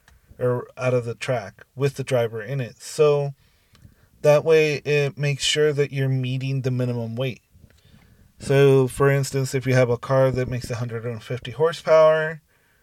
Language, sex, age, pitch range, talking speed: English, male, 30-49, 115-135 Hz, 160 wpm